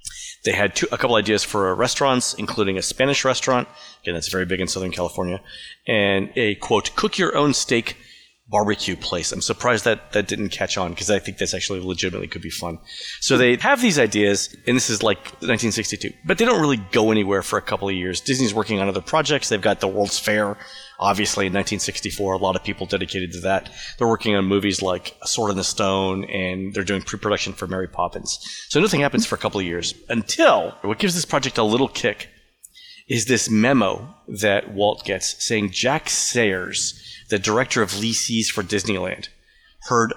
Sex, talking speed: male, 195 wpm